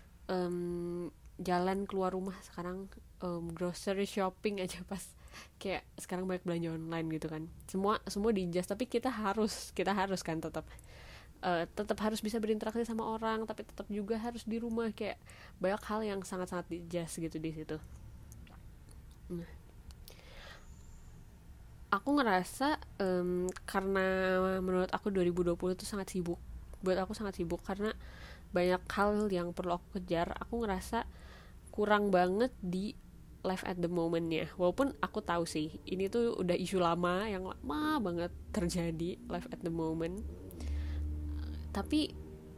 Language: Indonesian